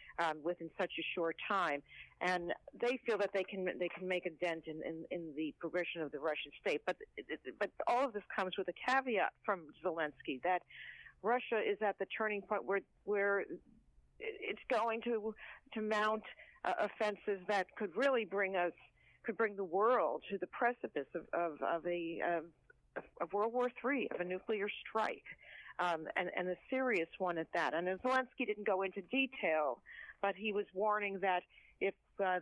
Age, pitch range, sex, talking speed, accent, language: 50-69, 180-220 Hz, female, 185 wpm, American, English